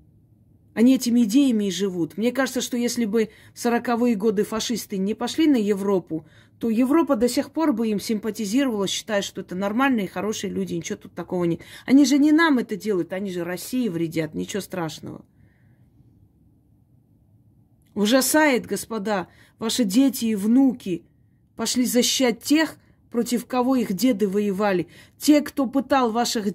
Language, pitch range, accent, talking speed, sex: Russian, 185-255 Hz, native, 150 wpm, female